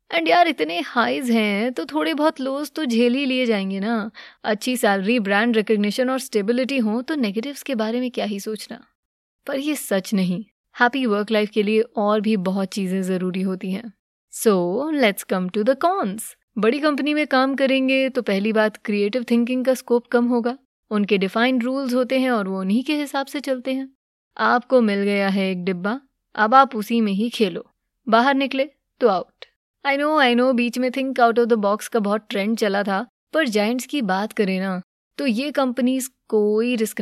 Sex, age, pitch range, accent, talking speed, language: female, 20-39, 205-260 Hz, Indian, 140 wpm, English